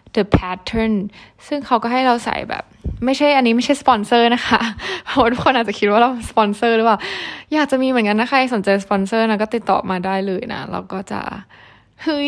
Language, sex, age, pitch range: Thai, female, 10-29, 195-230 Hz